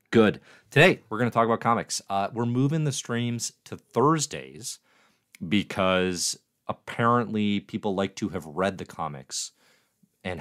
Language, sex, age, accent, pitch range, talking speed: English, male, 30-49, American, 85-115 Hz, 145 wpm